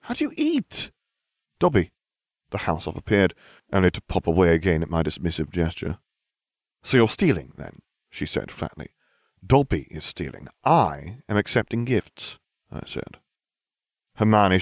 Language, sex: English, male